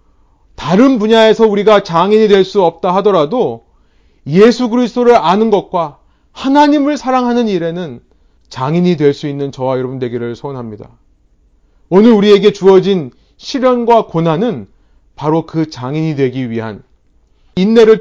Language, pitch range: Korean, 140-210 Hz